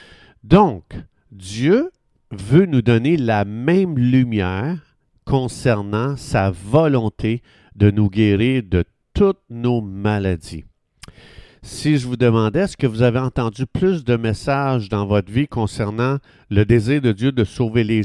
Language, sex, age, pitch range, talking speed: French, male, 50-69, 105-135 Hz, 135 wpm